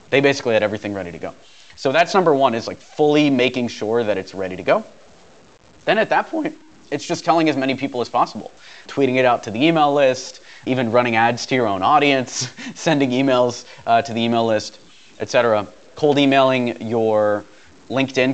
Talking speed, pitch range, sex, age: 195 wpm, 110-135 Hz, male, 30-49